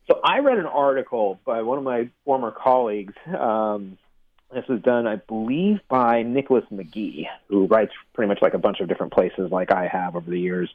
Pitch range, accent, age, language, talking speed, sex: 105-135 Hz, American, 30-49, English, 200 wpm, male